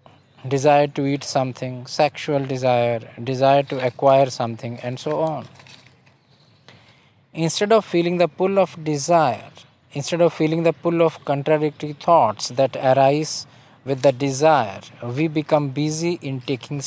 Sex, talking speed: male, 135 wpm